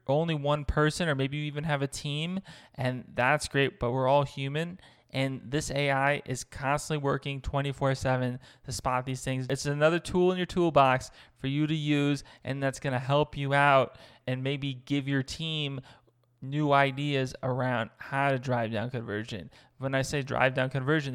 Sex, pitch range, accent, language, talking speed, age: male, 125-140 Hz, American, English, 180 wpm, 20-39